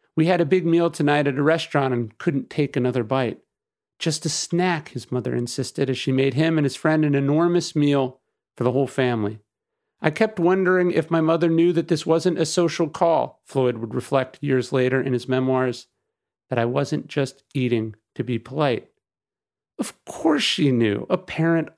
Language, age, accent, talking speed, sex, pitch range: English, 40-59, American, 190 wpm, male, 130-170 Hz